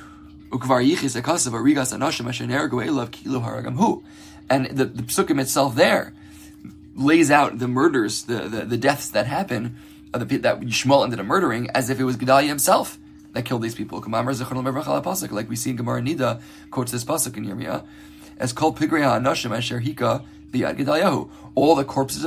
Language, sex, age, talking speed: English, male, 20-39, 125 wpm